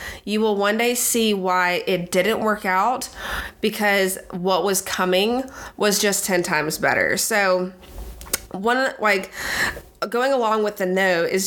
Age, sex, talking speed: 20-39, female, 145 wpm